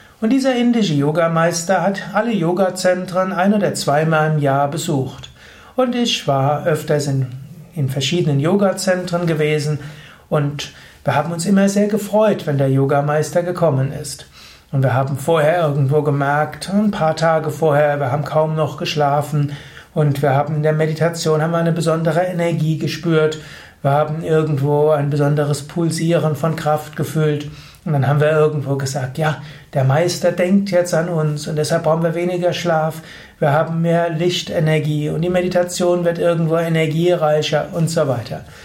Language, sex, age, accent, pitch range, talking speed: German, male, 60-79, German, 145-170 Hz, 160 wpm